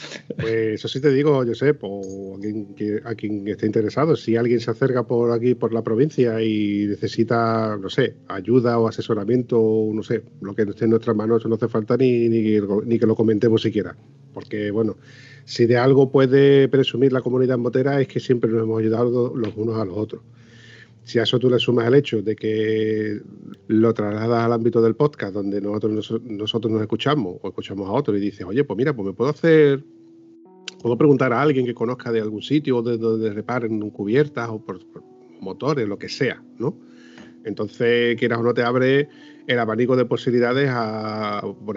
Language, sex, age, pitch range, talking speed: Spanish, male, 40-59, 110-130 Hz, 195 wpm